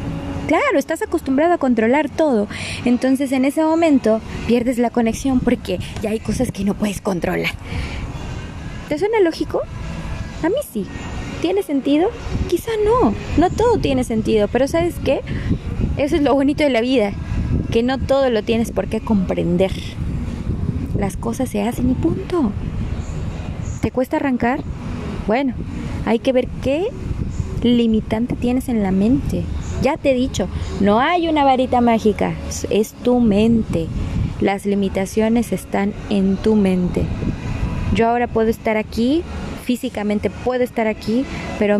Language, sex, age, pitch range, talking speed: Spanish, female, 20-39, 205-270 Hz, 145 wpm